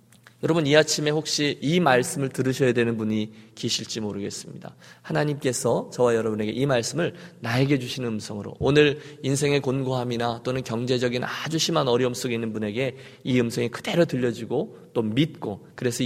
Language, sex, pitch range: Korean, male, 125-195 Hz